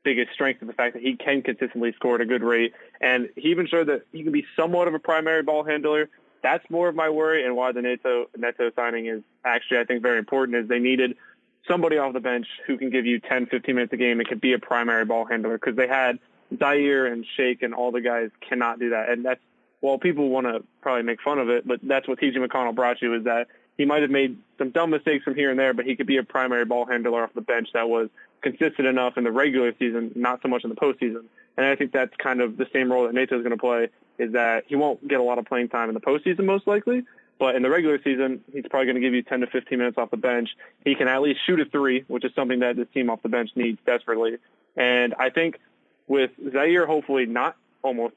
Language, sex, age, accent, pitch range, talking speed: English, male, 20-39, American, 120-140 Hz, 265 wpm